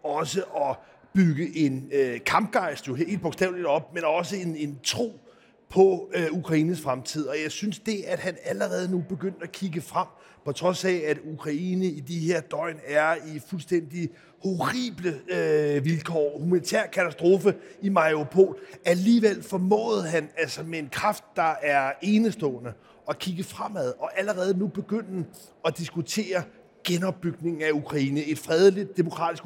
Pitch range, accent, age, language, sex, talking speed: 155-185 Hz, native, 30-49, Danish, male, 145 wpm